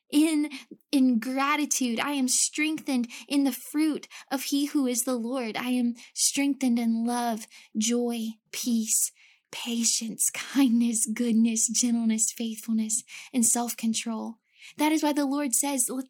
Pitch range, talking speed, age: 230-275 Hz, 135 wpm, 10-29